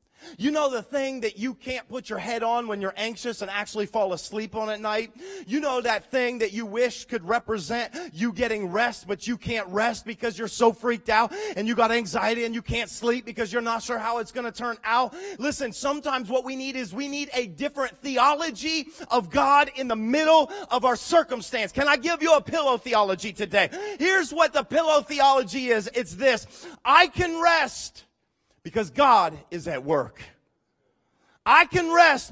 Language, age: English, 30-49